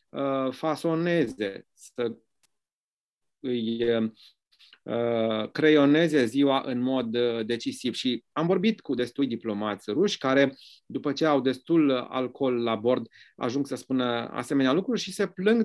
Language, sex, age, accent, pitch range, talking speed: English, male, 30-49, Romanian, 120-160 Hz, 125 wpm